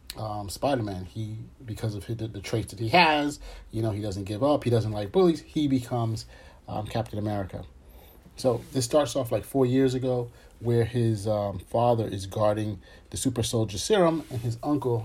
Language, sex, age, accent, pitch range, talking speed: English, male, 40-59, American, 105-125 Hz, 190 wpm